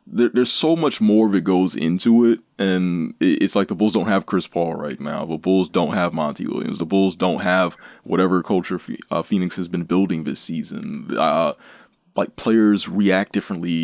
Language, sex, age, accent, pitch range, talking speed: English, male, 20-39, American, 90-120 Hz, 185 wpm